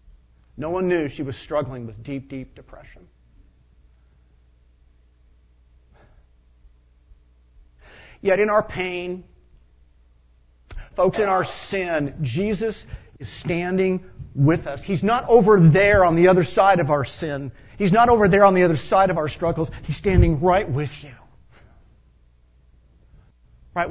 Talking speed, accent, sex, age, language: 130 wpm, American, male, 50-69, English